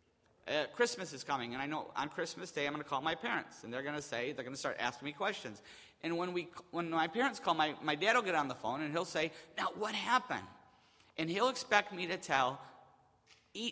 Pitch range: 155-235 Hz